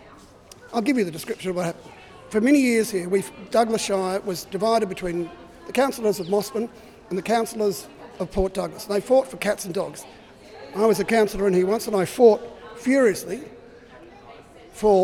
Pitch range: 185-225 Hz